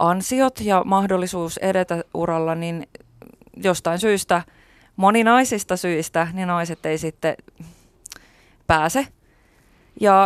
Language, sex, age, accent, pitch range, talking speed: Finnish, female, 20-39, native, 155-195 Hz, 95 wpm